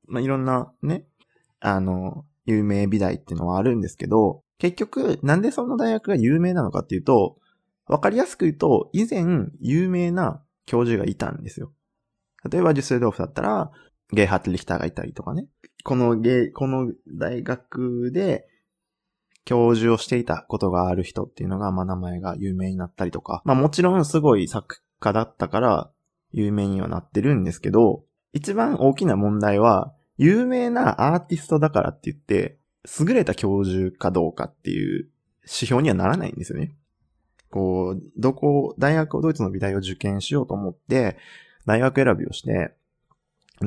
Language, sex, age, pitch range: Japanese, male, 20-39, 100-155 Hz